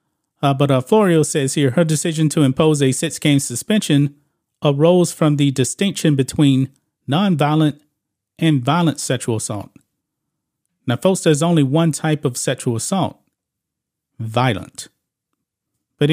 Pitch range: 135-160 Hz